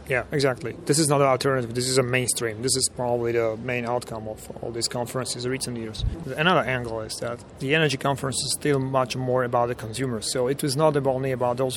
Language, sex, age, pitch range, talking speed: English, male, 30-49, 125-140 Hz, 225 wpm